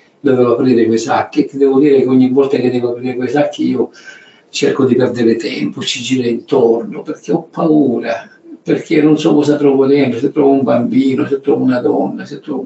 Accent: native